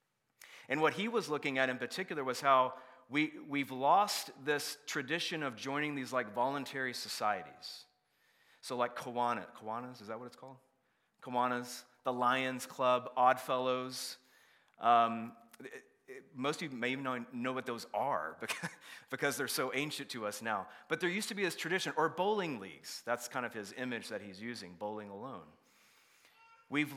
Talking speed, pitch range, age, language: 165 wpm, 125-150 Hz, 30-49, English